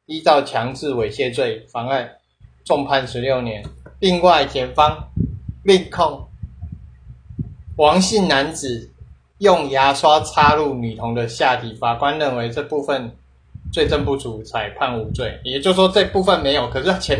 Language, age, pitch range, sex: Chinese, 30-49, 110-160 Hz, male